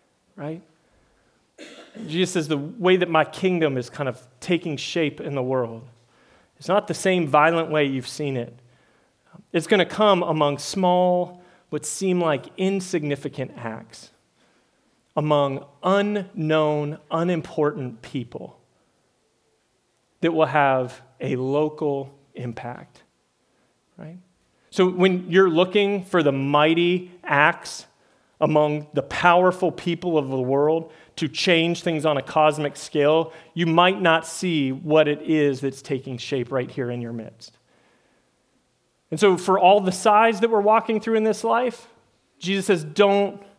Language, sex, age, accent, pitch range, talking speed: English, male, 30-49, American, 140-180 Hz, 140 wpm